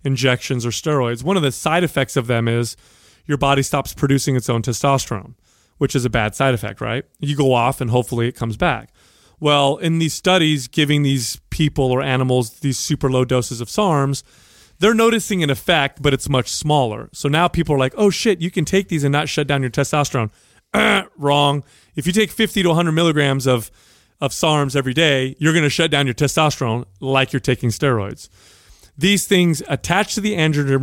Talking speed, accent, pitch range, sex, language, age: 200 wpm, American, 125-155 Hz, male, English, 30-49